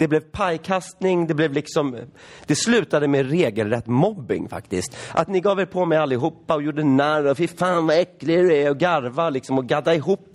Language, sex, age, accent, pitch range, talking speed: Swedish, male, 30-49, native, 125-175 Hz, 205 wpm